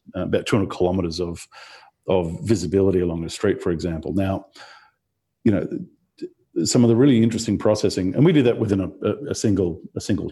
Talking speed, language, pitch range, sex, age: 175 wpm, English, 95-115 Hz, male, 50-69